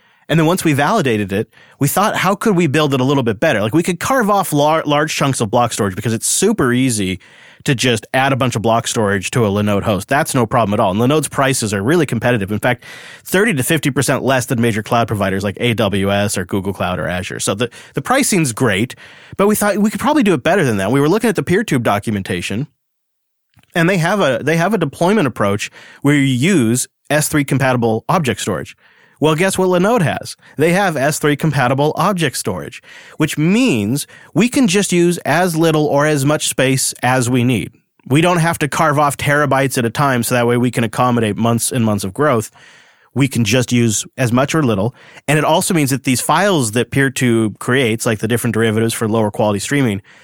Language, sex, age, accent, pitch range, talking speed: English, male, 30-49, American, 115-155 Hz, 215 wpm